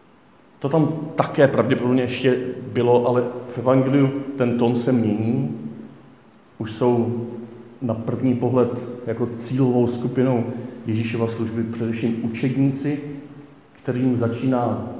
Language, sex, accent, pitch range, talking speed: Czech, male, native, 115-130 Hz, 110 wpm